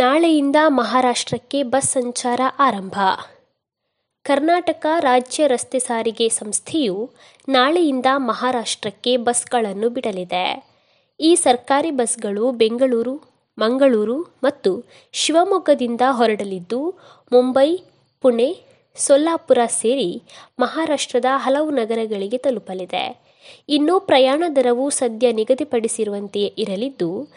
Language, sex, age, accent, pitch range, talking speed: Kannada, female, 20-39, native, 225-280 Hz, 80 wpm